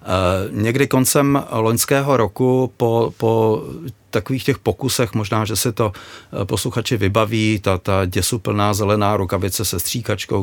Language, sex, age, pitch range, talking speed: Czech, male, 40-59, 95-120 Hz, 120 wpm